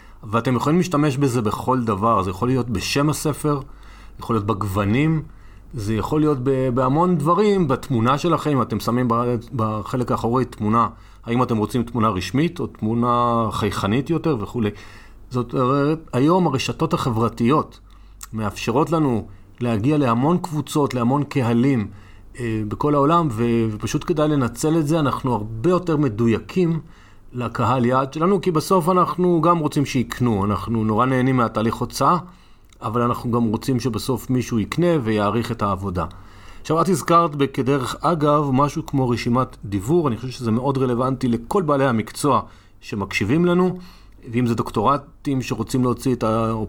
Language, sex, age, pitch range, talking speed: Hebrew, male, 40-59, 110-145 Hz, 140 wpm